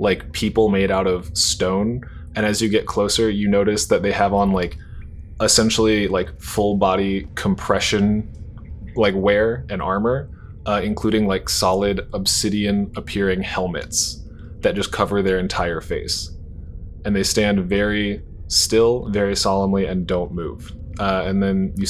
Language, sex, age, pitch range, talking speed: English, male, 20-39, 95-105 Hz, 150 wpm